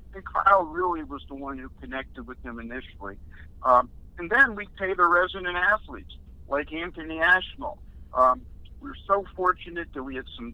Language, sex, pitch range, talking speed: English, male, 130-160 Hz, 170 wpm